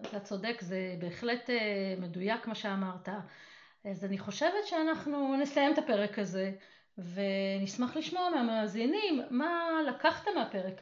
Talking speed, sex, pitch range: 115 wpm, female, 200-265 Hz